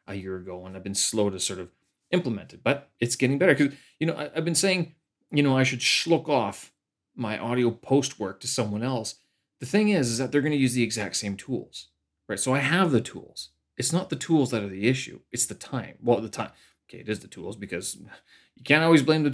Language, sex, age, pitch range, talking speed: English, male, 30-49, 100-135 Hz, 245 wpm